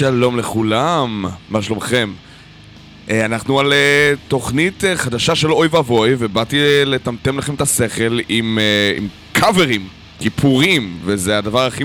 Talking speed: 115 wpm